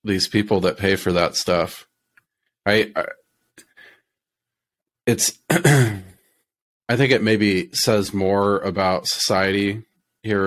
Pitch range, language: 95-105 Hz, English